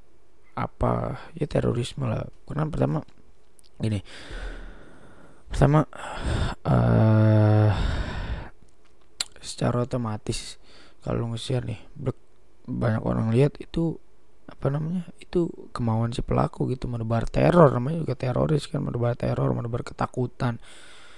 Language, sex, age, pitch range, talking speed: English, male, 20-39, 105-145 Hz, 105 wpm